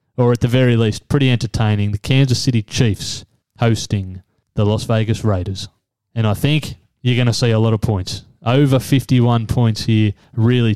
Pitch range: 110-130 Hz